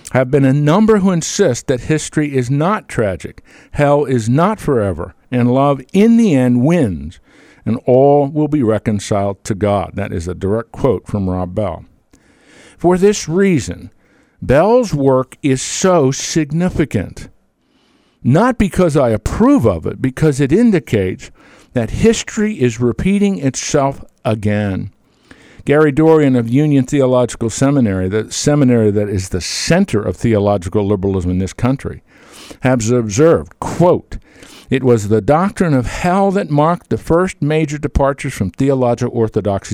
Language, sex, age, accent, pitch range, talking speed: English, male, 50-69, American, 105-155 Hz, 145 wpm